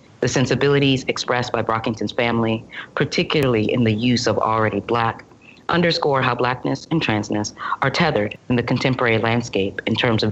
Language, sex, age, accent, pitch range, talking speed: English, female, 30-49, American, 110-135 Hz, 155 wpm